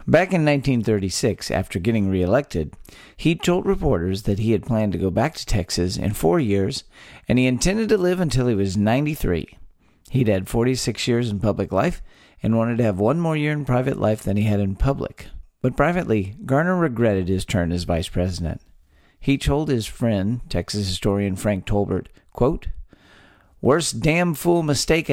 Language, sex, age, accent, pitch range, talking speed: English, male, 50-69, American, 100-135 Hz, 180 wpm